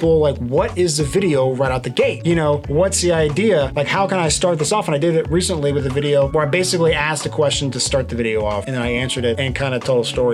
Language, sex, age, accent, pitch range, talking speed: English, male, 30-49, American, 150-210 Hz, 295 wpm